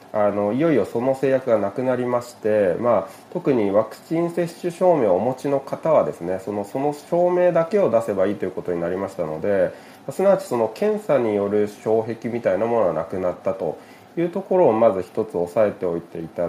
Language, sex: Japanese, male